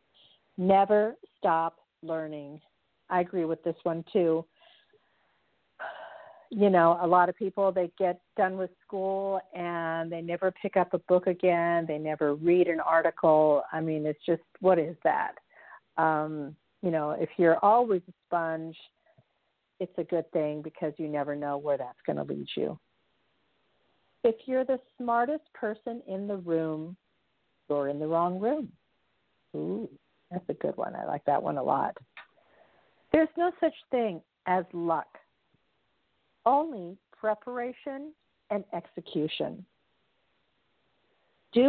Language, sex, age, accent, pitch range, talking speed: English, female, 50-69, American, 165-220 Hz, 140 wpm